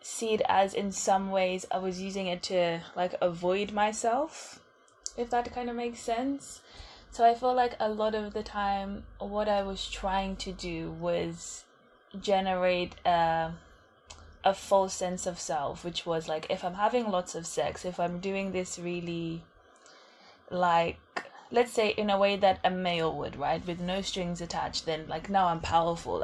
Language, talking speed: English, 175 wpm